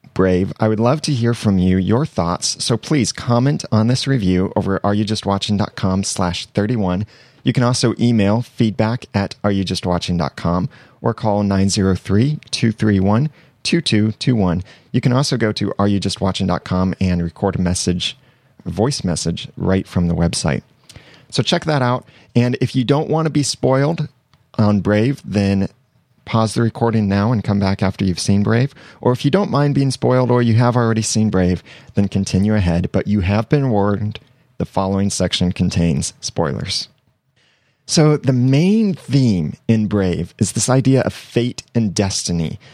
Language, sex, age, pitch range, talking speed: English, male, 30-49, 100-130 Hz, 185 wpm